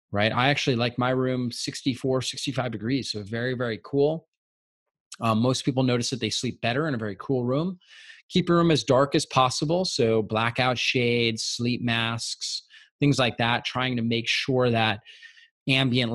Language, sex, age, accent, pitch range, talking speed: English, male, 30-49, American, 115-145 Hz, 175 wpm